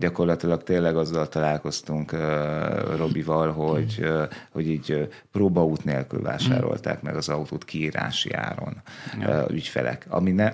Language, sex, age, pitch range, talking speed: Hungarian, male, 30-49, 80-95 Hz, 125 wpm